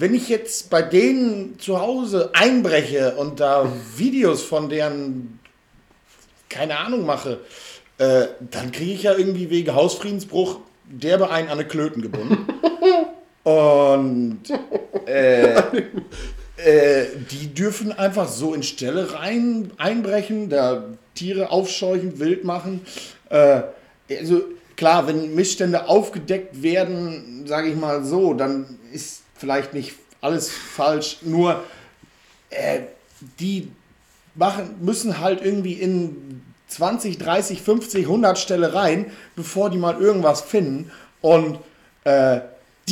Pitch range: 145-200 Hz